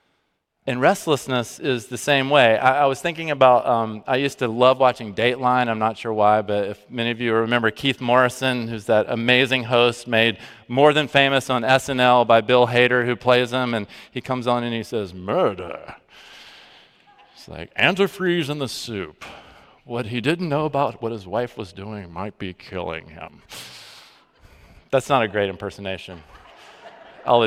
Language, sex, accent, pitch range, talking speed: English, male, American, 115-155 Hz, 175 wpm